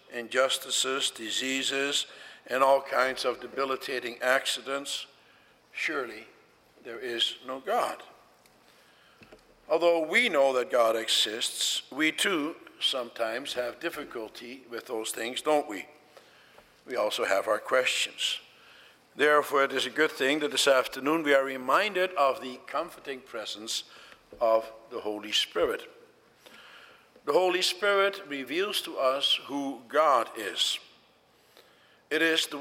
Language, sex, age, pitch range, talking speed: English, male, 60-79, 125-155 Hz, 120 wpm